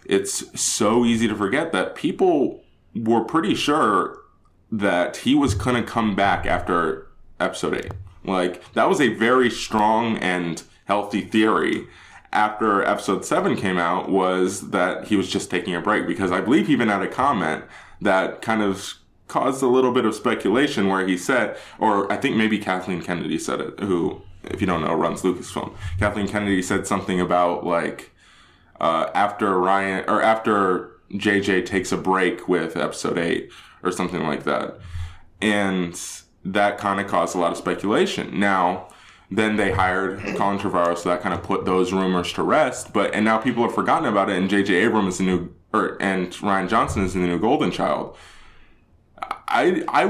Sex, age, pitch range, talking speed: male, 20-39, 90-110 Hz, 180 wpm